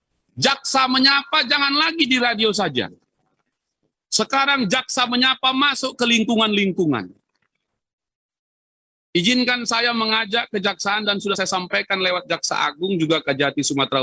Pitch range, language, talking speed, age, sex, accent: 180-255 Hz, Indonesian, 120 wpm, 40-59, male, native